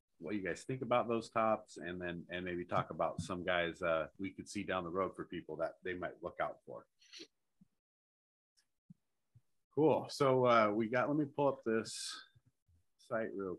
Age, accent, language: 30-49, American, English